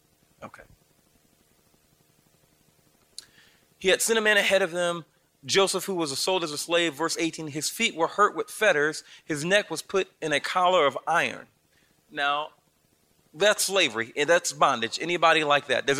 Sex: male